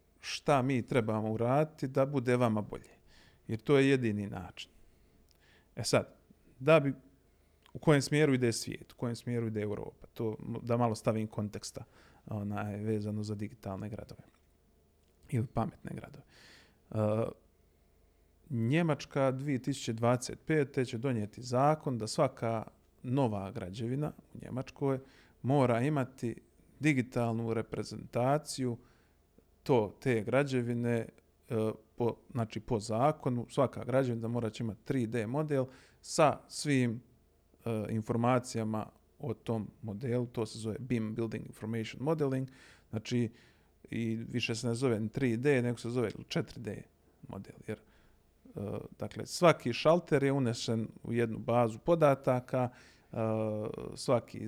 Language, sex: Croatian, male